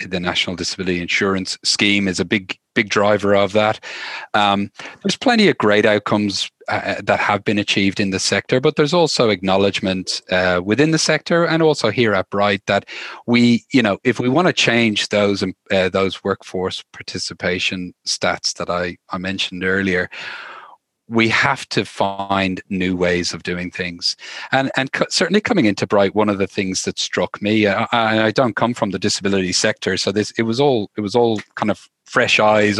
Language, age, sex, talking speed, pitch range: English, 40-59, male, 185 wpm, 95-115 Hz